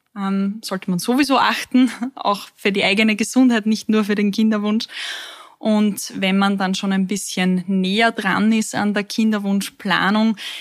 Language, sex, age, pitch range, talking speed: German, female, 20-39, 185-215 Hz, 155 wpm